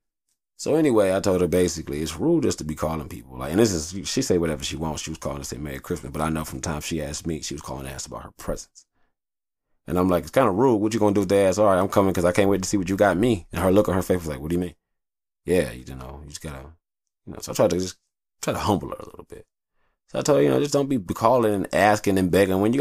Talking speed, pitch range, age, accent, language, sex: 315 wpm, 75-95 Hz, 30-49, American, English, male